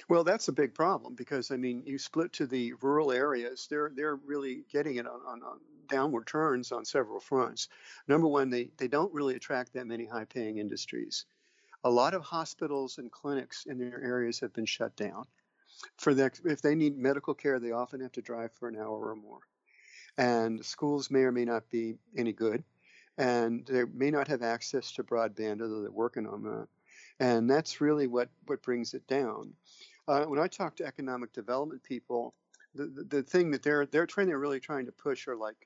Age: 50-69